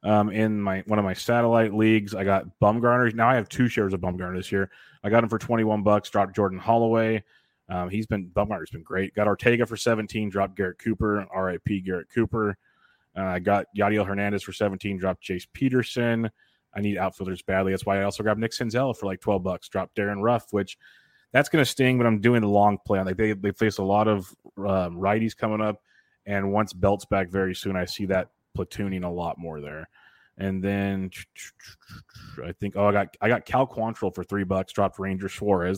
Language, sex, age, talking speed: English, male, 30-49, 220 wpm